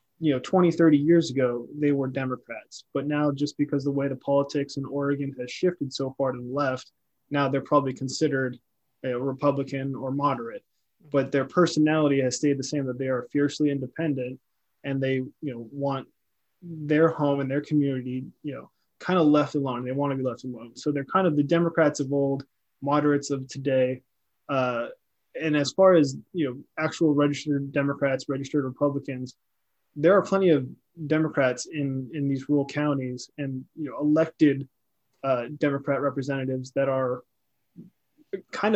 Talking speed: 170 wpm